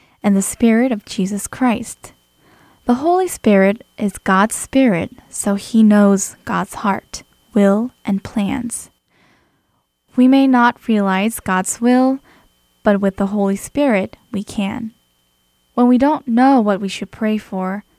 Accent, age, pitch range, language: American, 10-29, 195-240 Hz, Korean